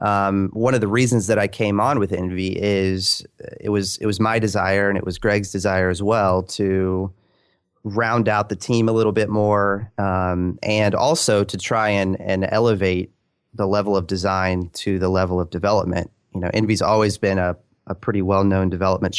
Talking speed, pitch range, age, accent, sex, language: 195 wpm, 90-105 Hz, 30-49, American, male, English